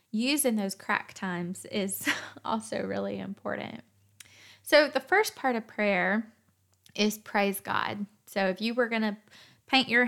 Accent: American